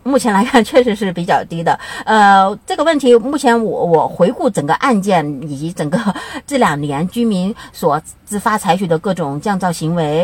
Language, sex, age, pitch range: Chinese, female, 50-69, 170-250 Hz